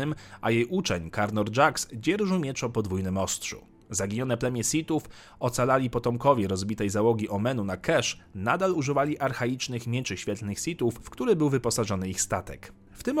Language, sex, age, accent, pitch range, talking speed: Polish, male, 40-59, native, 110-140 Hz, 150 wpm